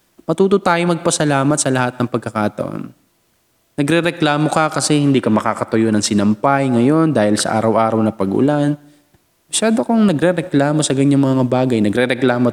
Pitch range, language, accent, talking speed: 115-150 Hz, Filipino, native, 140 wpm